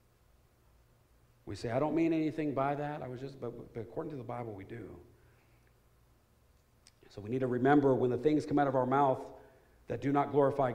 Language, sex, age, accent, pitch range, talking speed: English, male, 40-59, American, 120-160 Hz, 200 wpm